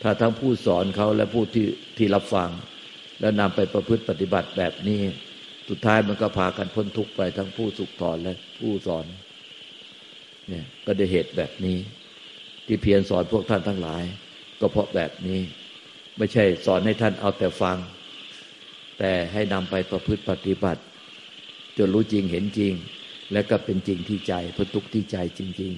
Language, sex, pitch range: Thai, male, 95-110 Hz